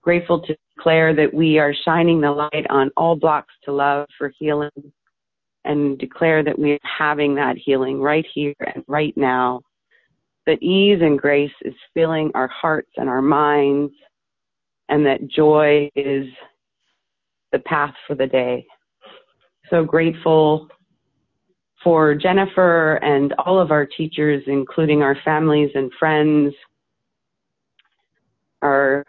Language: English